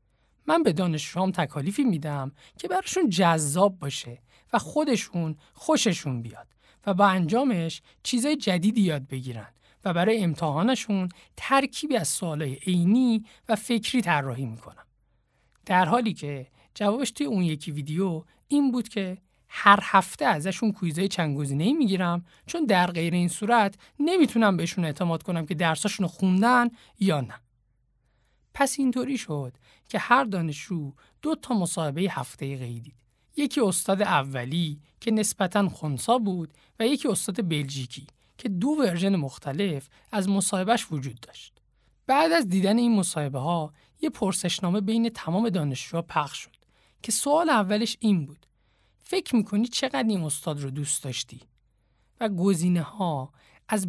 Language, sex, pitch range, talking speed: Persian, male, 145-220 Hz, 135 wpm